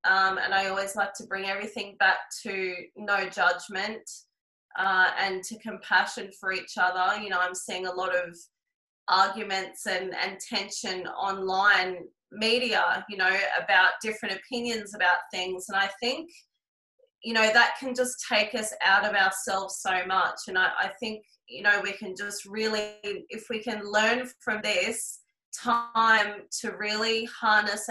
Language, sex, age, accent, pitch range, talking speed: English, female, 20-39, Australian, 190-220 Hz, 160 wpm